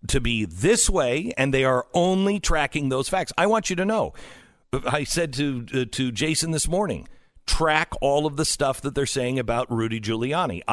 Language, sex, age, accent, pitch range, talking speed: English, male, 50-69, American, 120-170 Hz, 195 wpm